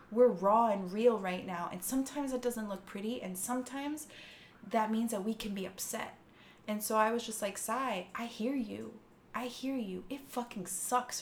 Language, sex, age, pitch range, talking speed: English, female, 20-39, 195-250 Hz, 200 wpm